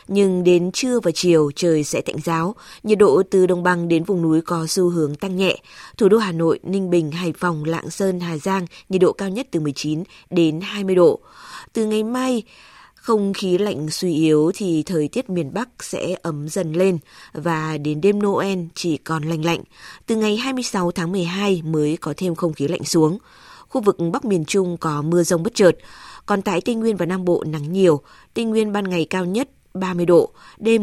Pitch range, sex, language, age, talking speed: 165-200 Hz, female, Vietnamese, 20-39, 210 wpm